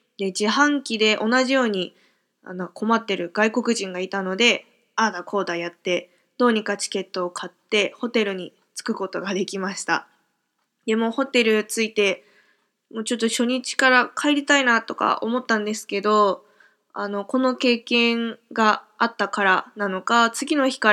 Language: Japanese